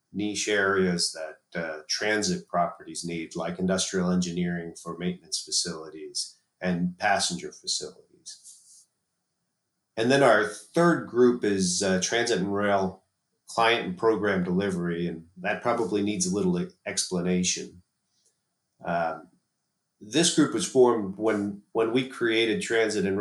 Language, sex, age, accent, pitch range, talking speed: English, male, 30-49, American, 95-115 Hz, 125 wpm